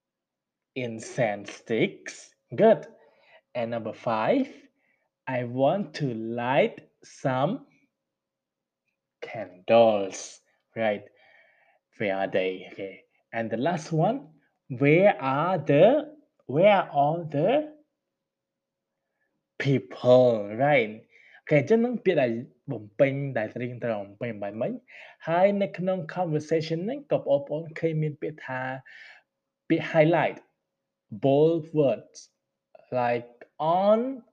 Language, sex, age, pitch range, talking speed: English, male, 20-39, 120-185 Hz, 70 wpm